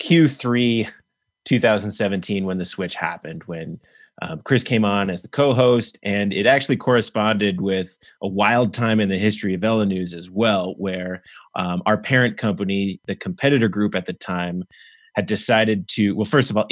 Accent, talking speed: American, 170 wpm